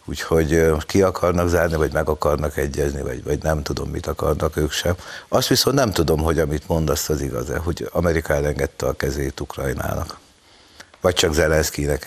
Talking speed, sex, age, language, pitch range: 170 wpm, male, 60-79, Hungarian, 75-95 Hz